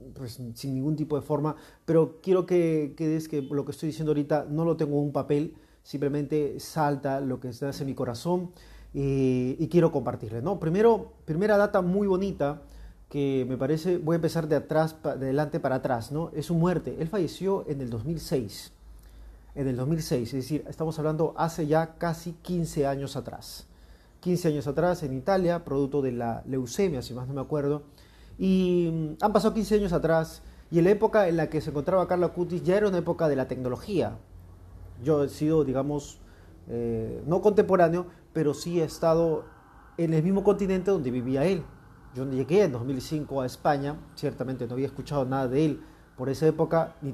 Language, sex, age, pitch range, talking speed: Spanish, male, 40-59, 135-170 Hz, 190 wpm